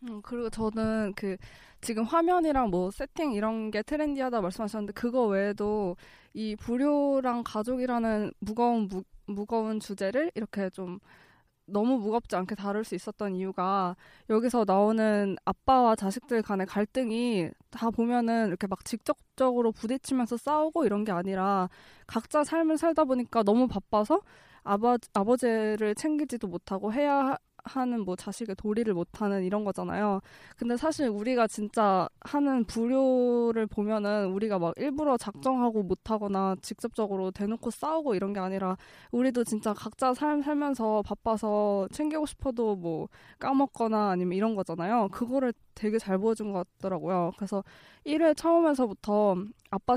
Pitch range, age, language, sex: 200-250 Hz, 20-39, Korean, female